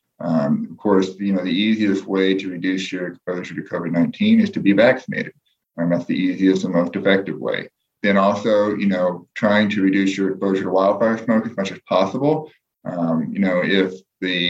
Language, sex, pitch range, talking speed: English, male, 95-130 Hz, 195 wpm